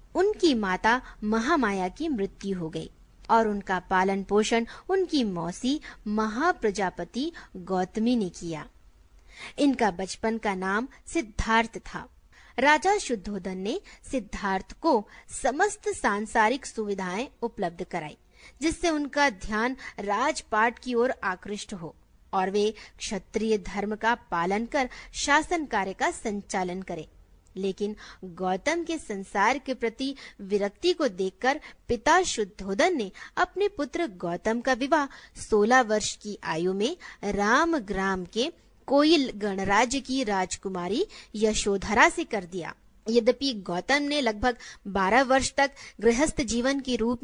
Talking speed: 120 wpm